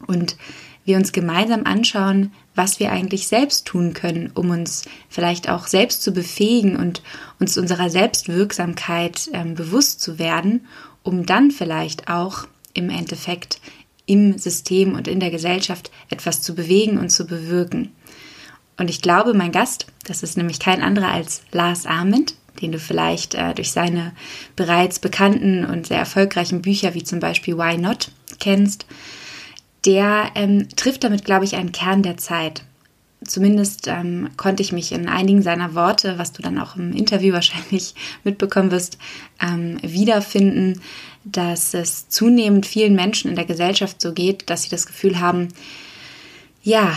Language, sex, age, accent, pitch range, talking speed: German, female, 20-39, German, 175-200 Hz, 155 wpm